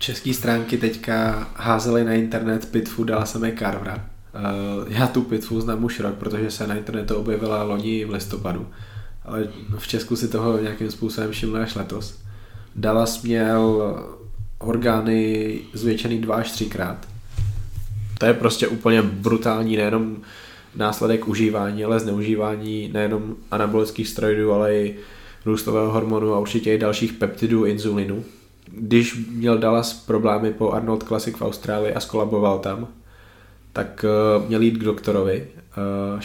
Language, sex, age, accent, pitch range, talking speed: Czech, male, 20-39, native, 105-115 Hz, 135 wpm